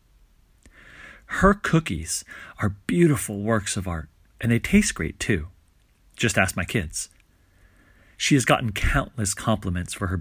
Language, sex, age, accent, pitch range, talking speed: English, male, 40-59, American, 90-120 Hz, 135 wpm